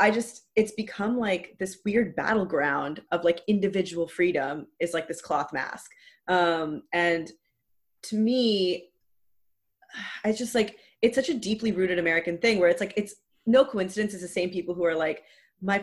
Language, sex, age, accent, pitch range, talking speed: English, female, 20-39, American, 170-210 Hz, 170 wpm